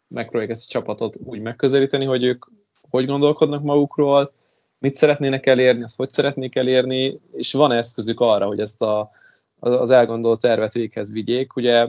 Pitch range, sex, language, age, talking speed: 115-135 Hz, male, Hungarian, 20-39, 155 wpm